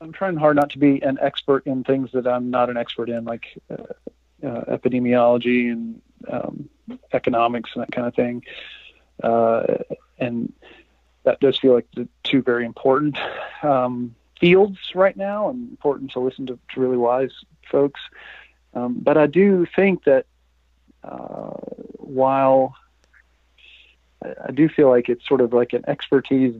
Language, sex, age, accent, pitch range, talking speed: English, male, 40-59, American, 120-145 Hz, 160 wpm